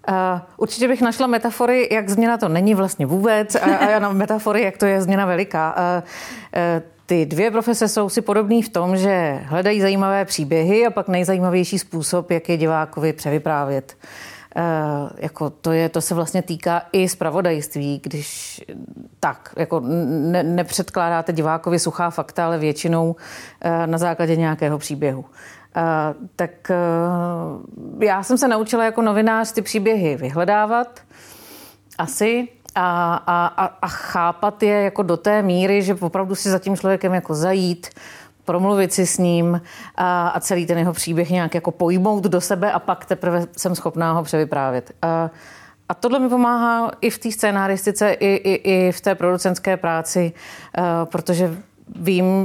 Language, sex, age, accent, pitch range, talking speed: Czech, female, 40-59, native, 170-205 Hz, 160 wpm